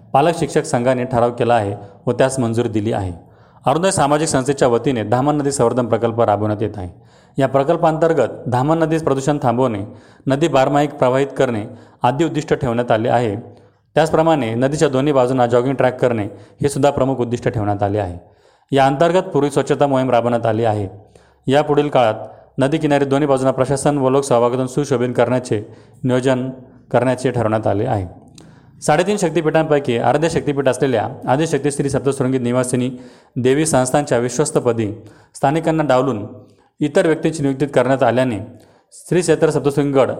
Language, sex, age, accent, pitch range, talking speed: Marathi, male, 30-49, native, 120-150 Hz, 140 wpm